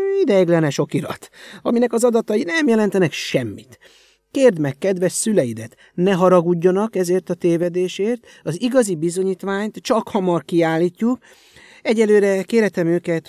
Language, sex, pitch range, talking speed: Hungarian, male, 140-210 Hz, 115 wpm